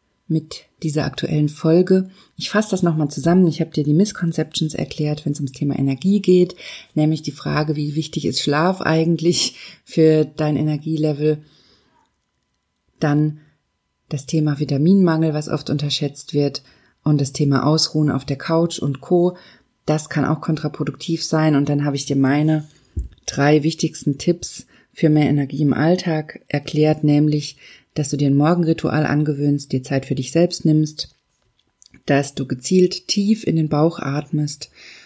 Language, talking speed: German, 155 wpm